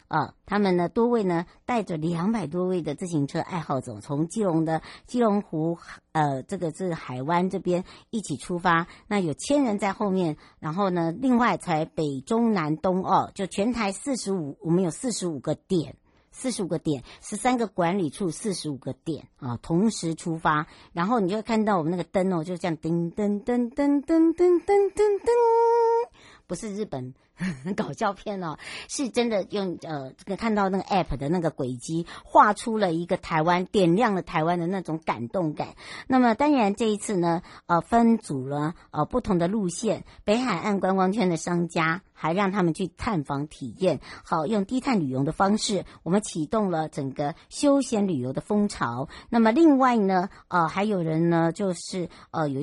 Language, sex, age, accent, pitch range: Chinese, male, 60-79, American, 160-210 Hz